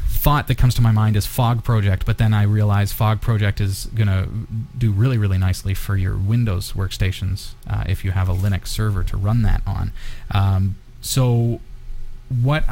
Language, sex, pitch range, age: English, male, 100-120 Hz, 30-49